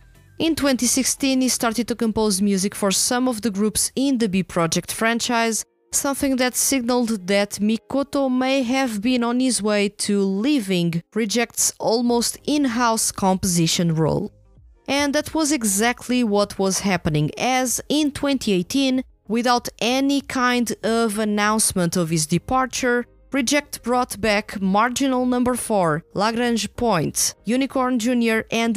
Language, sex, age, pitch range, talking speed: English, female, 20-39, 180-250 Hz, 135 wpm